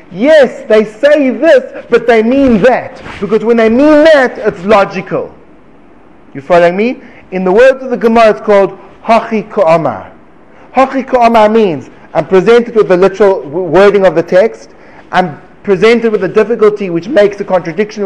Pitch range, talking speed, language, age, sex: 185-250 Hz, 160 wpm, English, 30-49, male